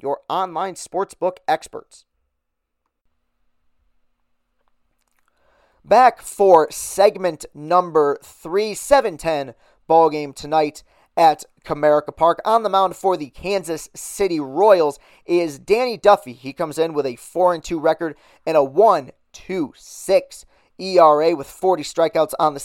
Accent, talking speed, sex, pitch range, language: American, 125 wpm, male, 145-175 Hz, English